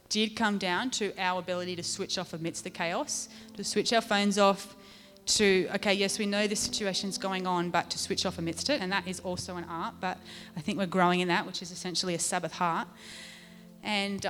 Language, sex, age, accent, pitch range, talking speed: English, female, 30-49, Australian, 185-225 Hz, 220 wpm